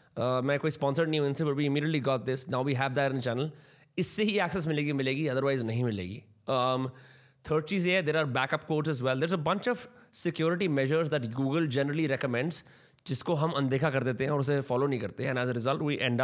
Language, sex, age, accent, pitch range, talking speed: Hindi, male, 20-39, native, 130-150 Hz, 220 wpm